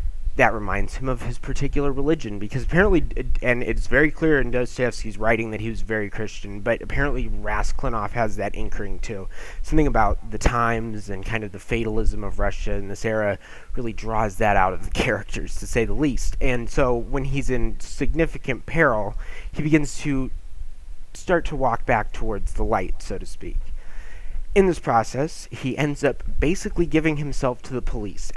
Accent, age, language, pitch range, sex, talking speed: American, 20-39, English, 105-135 Hz, male, 180 wpm